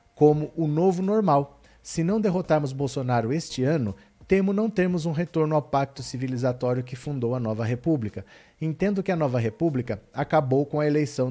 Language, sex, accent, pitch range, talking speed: Portuguese, male, Brazilian, 125-150 Hz, 170 wpm